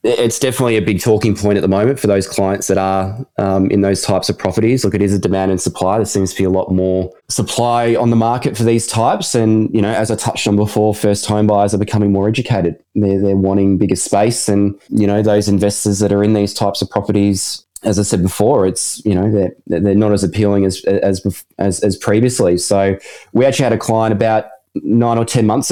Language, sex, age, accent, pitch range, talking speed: English, male, 20-39, Australian, 95-110 Hz, 235 wpm